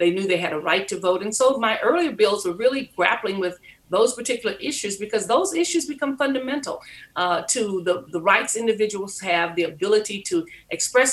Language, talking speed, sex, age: English, 195 wpm, female, 50-69